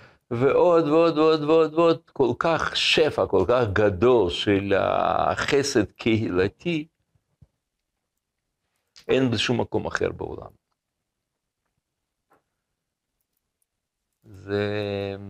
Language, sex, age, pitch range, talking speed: Hebrew, male, 60-79, 100-150 Hz, 80 wpm